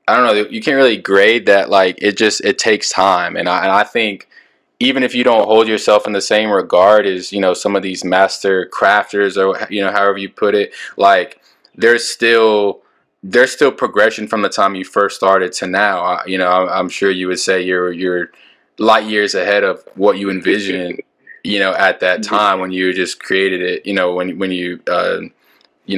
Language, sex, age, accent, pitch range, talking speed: English, male, 20-39, American, 95-105 Hz, 210 wpm